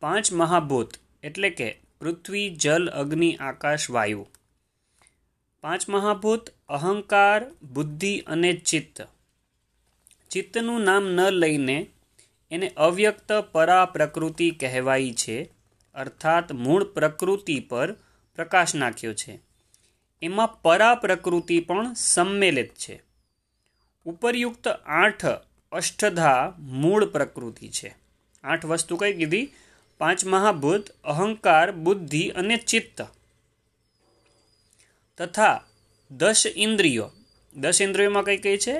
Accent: native